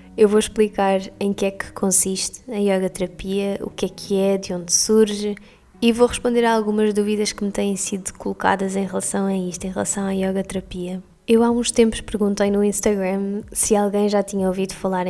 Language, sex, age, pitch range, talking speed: Portuguese, female, 20-39, 195-220 Hz, 205 wpm